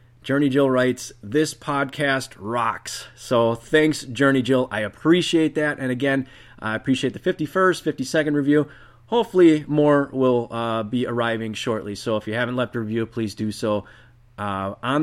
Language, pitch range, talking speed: English, 105-135 Hz, 160 wpm